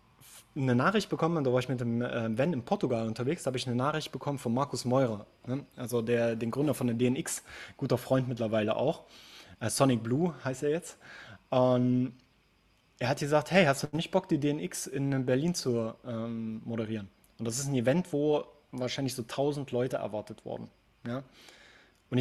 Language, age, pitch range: German, 20-39, 125-155 Hz